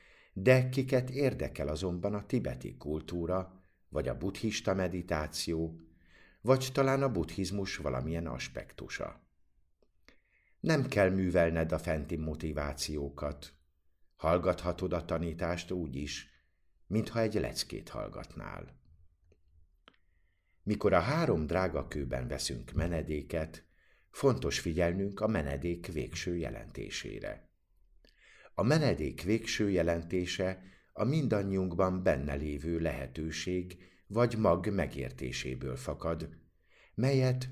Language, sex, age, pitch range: Hungarian, male, 60-79, 75-95 Hz